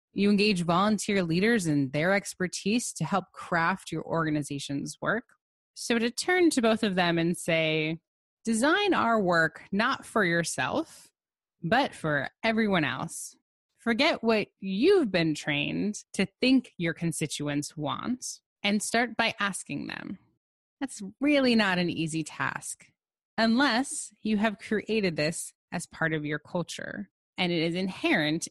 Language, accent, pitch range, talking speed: English, American, 160-225 Hz, 140 wpm